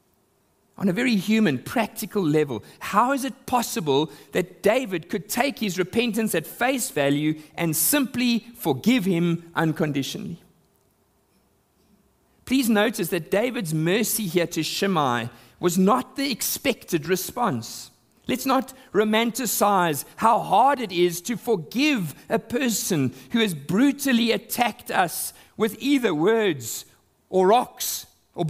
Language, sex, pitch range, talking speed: English, male, 155-225 Hz, 125 wpm